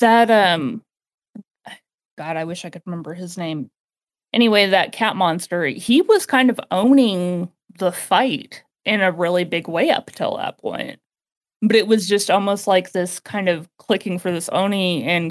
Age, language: 20-39, English